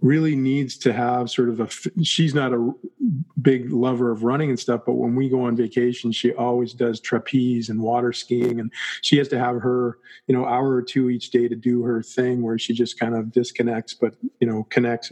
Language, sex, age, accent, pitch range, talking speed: English, male, 50-69, American, 120-135 Hz, 220 wpm